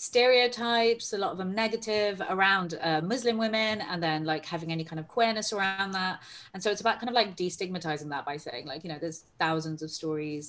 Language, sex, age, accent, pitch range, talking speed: English, female, 30-49, British, 150-185 Hz, 215 wpm